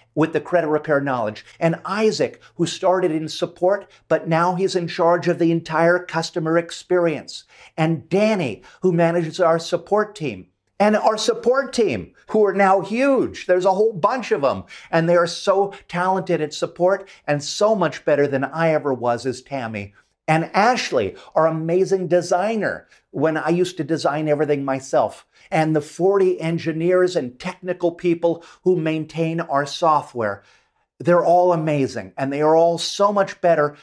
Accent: American